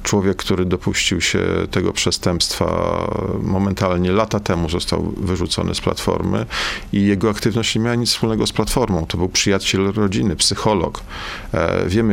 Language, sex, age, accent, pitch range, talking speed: Polish, male, 40-59, native, 95-110 Hz, 140 wpm